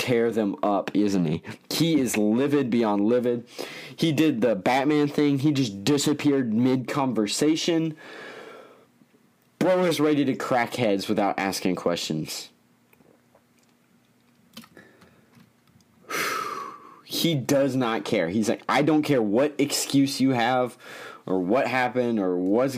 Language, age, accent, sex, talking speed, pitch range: English, 20-39, American, male, 125 wpm, 110-145 Hz